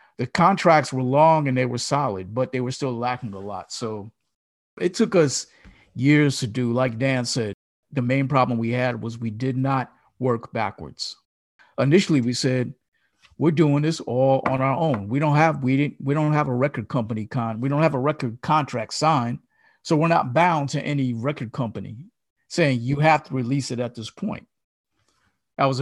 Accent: American